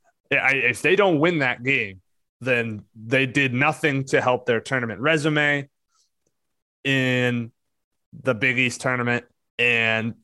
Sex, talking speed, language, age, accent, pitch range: male, 125 wpm, English, 20-39, American, 115-150 Hz